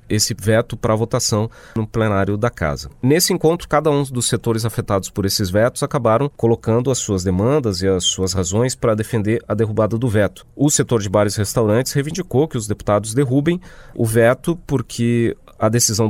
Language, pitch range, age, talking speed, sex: Portuguese, 105-130 Hz, 30-49, 185 wpm, male